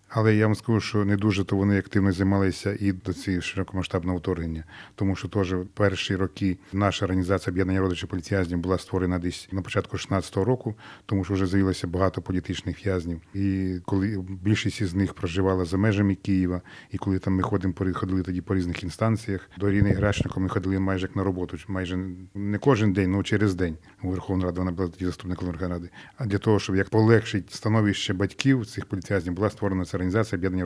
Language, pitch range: Russian, 95-105 Hz